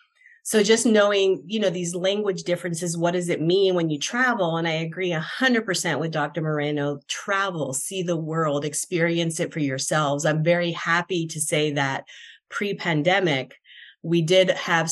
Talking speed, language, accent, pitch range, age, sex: 160 wpm, English, American, 150-185 Hz, 30-49, female